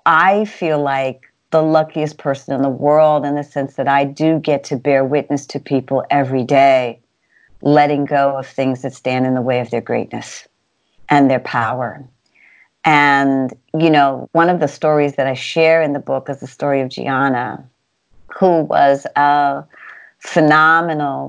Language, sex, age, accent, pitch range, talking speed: English, female, 50-69, American, 135-150 Hz, 170 wpm